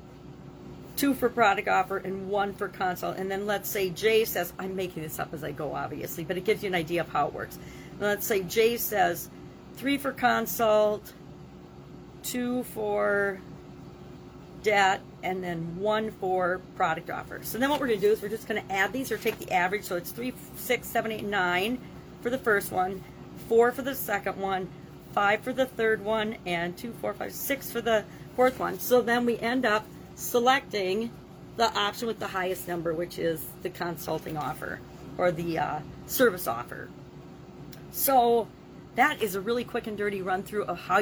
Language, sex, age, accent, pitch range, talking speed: English, female, 40-59, American, 190-245 Hz, 185 wpm